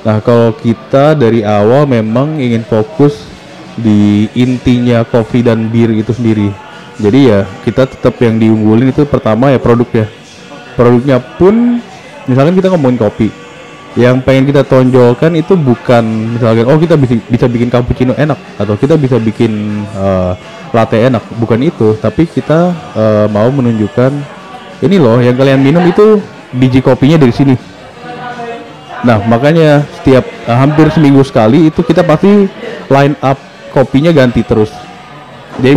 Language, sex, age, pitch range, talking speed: Indonesian, male, 20-39, 110-140 Hz, 140 wpm